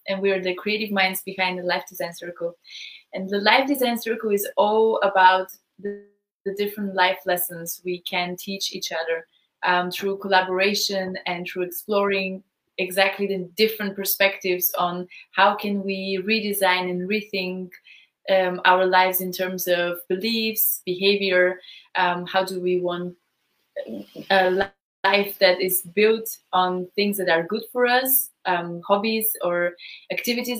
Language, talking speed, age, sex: English, 145 wpm, 20-39, female